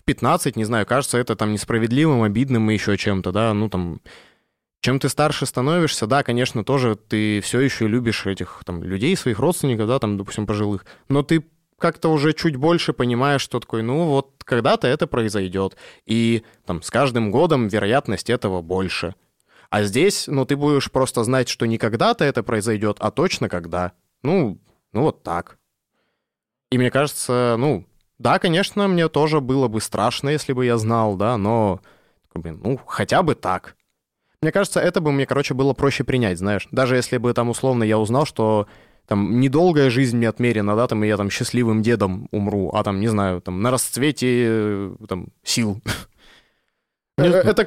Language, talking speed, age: Russian, 170 wpm, 20-39